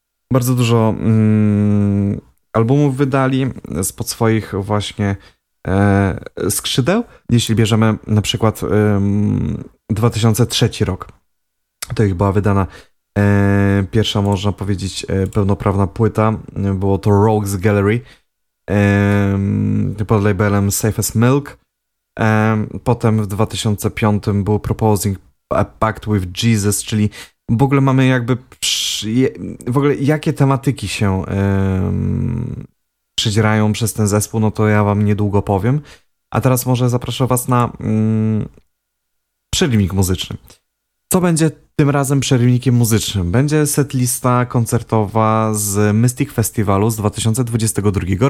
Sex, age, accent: male, 20-39, native